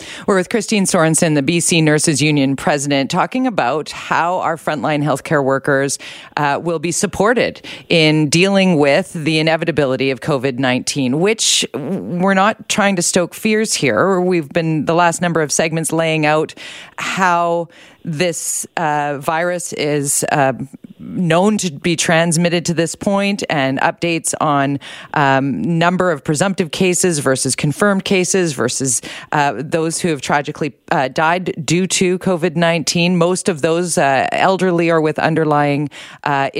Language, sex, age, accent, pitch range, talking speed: English, female, 40-59, American, 150-185 Hz, 145 wpm